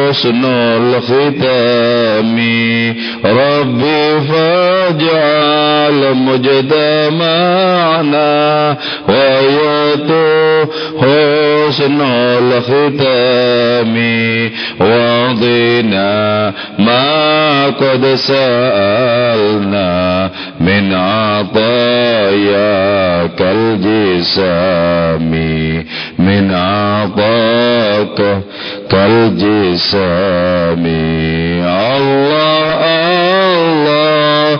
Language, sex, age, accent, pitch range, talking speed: Indonesian, male, 50-69, Indian, 115-150 Hz, 35 wpm